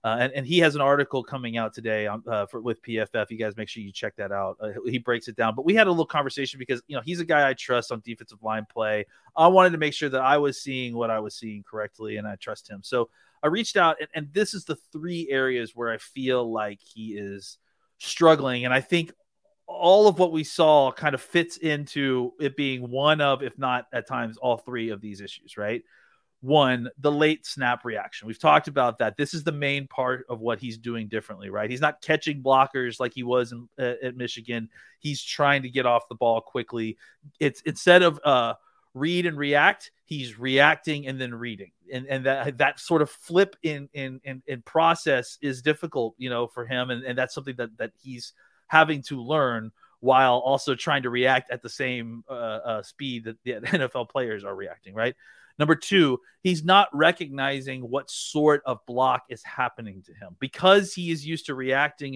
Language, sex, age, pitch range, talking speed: English, male, 30-49, 120-155 Hz, 215 wpm